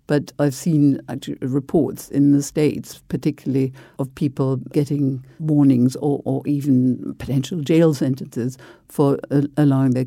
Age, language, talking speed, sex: 60-79, English, 135 wpm, female